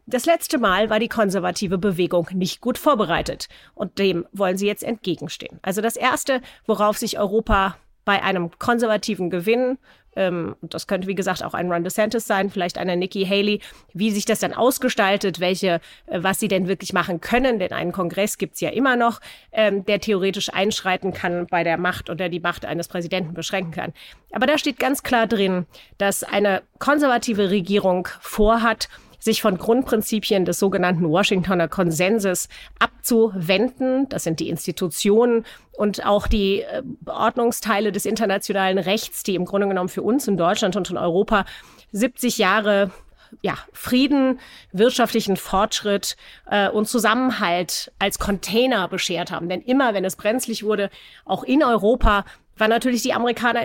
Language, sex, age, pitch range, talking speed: German, female, 30-49, 185-230 Hz, 160 wpm